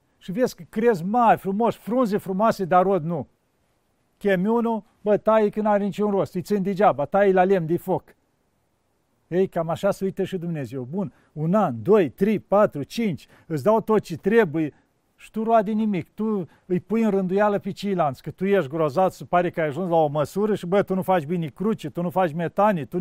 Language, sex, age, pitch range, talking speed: Romanian, male, 50-69, 170-205 Hz, 205 wpm